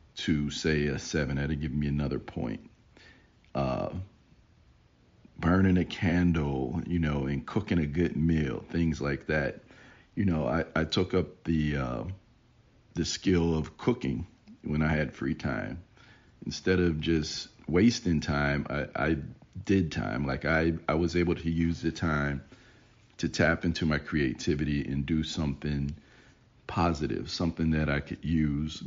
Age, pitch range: 40-59, 75-90 Hz